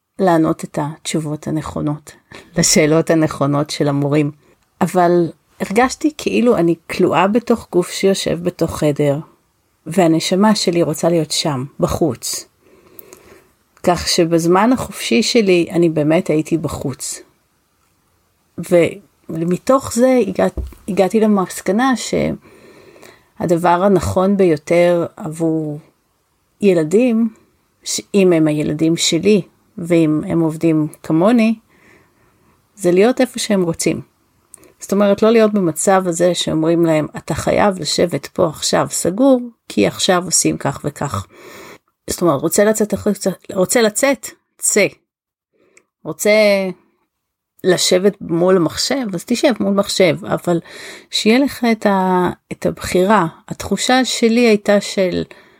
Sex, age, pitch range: female, 40-59, 160-205 Hz